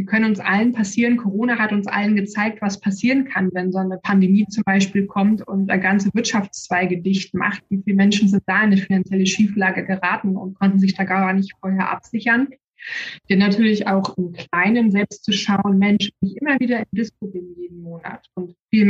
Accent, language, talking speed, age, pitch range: German, German, 200 wpm, 20-39, 190-215 Hz